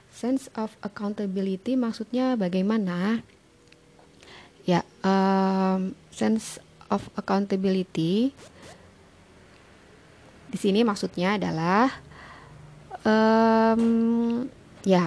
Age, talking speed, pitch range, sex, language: 30-49, 65 wpm, 165-210 Hz, female, Indonesian